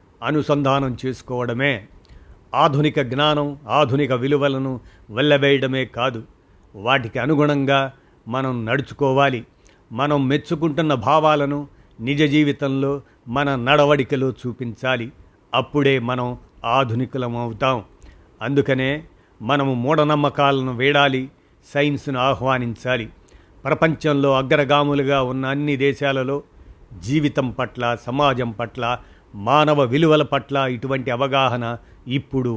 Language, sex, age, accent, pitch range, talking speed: Telugu, male, 50-69, native, 120-145 Hz, 80 wpm